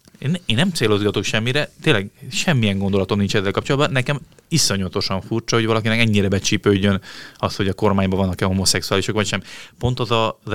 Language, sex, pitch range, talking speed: Hungarian, male, 95-120 Hz, 160 wpm